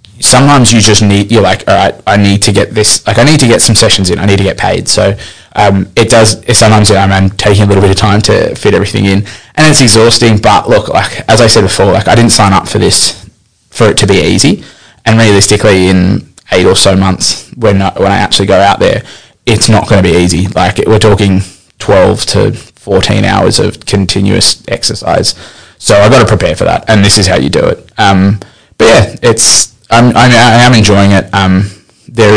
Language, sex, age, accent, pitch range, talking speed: English, male, 20-39, Australian, 95-110 Hz, 230 wpm